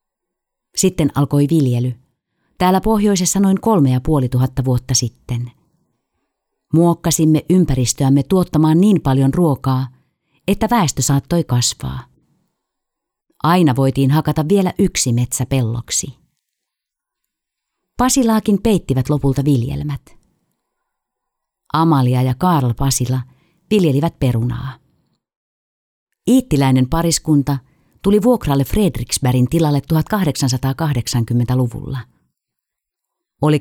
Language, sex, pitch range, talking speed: Finnish, female, 130-170 Hz, 80 wpm